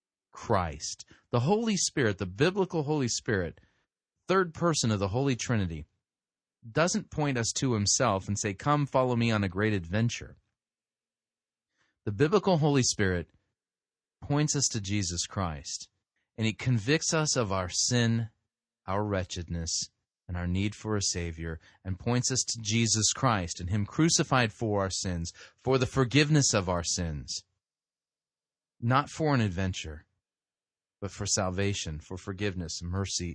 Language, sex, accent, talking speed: English, male, American, 145 wpm